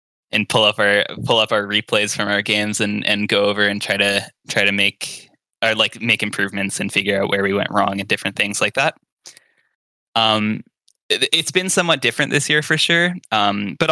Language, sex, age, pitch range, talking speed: English, male, 10-29, 100-125 Hz, 210 wpm